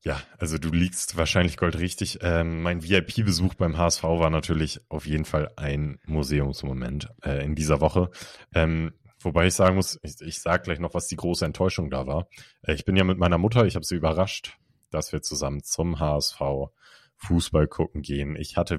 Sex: male